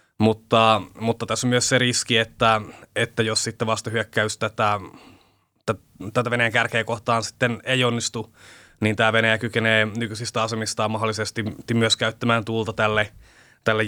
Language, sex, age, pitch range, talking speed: English, male, 20-39, 105-120 Hz, 140 wpm